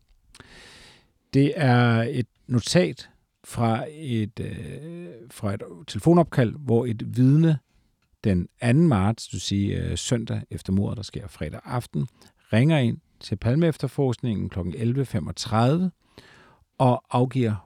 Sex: male